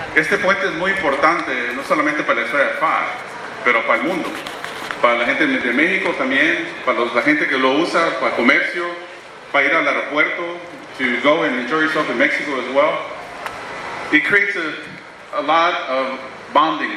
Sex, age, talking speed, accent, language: male, 40-59, 175 wpm, American, English